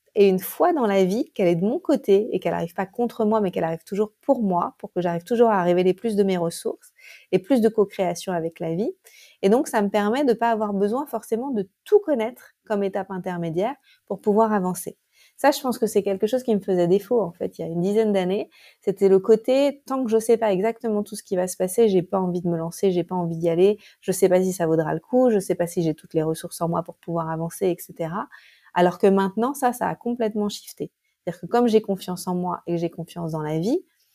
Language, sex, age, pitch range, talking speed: French, female, 30-49, 180-230 Hz, 275 wpm